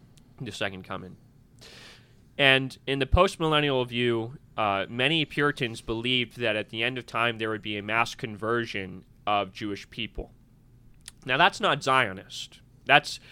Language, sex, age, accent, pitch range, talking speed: English, male, 20-39, American, 115-145 Hz, 150 wpm